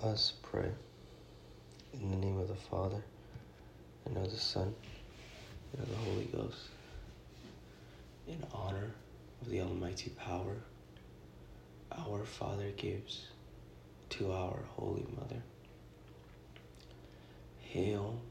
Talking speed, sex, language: 100 wpm, male, English